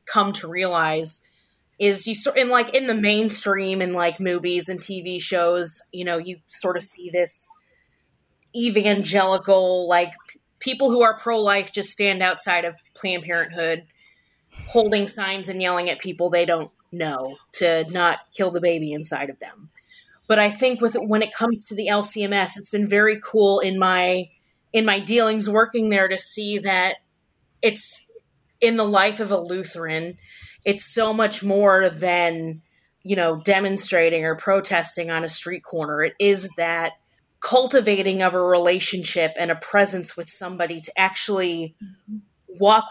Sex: female